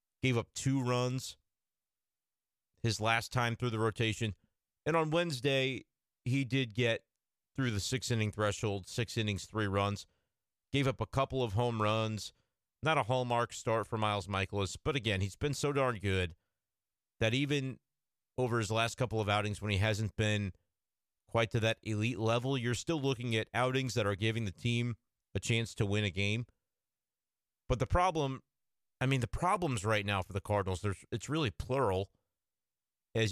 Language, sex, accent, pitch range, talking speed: English, male, American, 105-125 Hz, 170 wpm